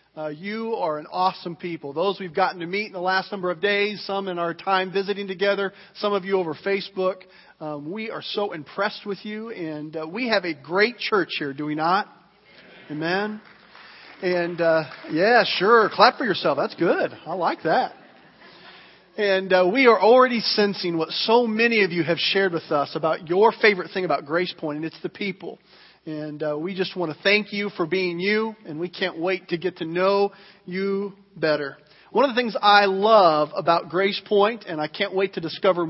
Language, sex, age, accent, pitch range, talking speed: English, male, 40-59, American, 170-205 Hz, 200 wpm